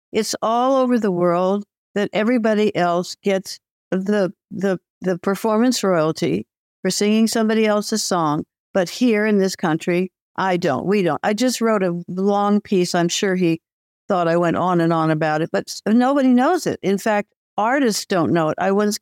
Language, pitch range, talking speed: English, 175-220 Hz, 180 wpm